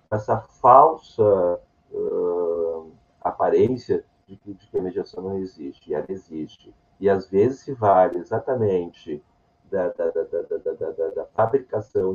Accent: Brazilian